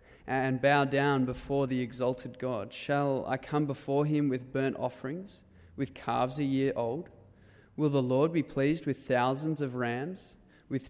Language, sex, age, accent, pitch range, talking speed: English, male, 20-39, Australian, 120-145 Hz, 165 wpm